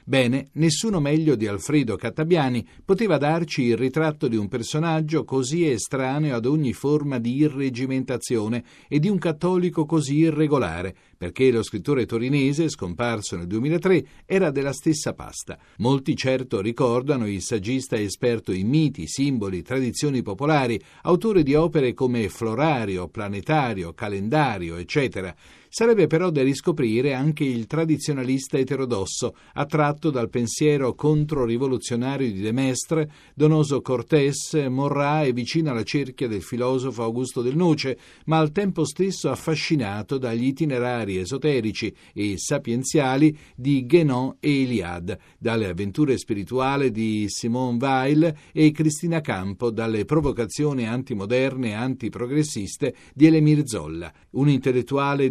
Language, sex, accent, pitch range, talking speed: Italian, male, native, 115-155 Hz, 125 wpm